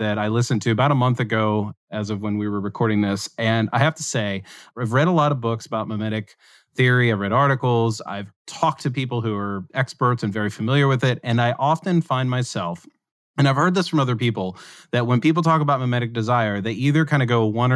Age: 30-49